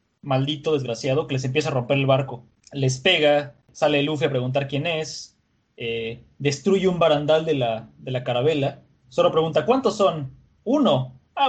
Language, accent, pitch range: Spanish, Mexican, 125-165 Hz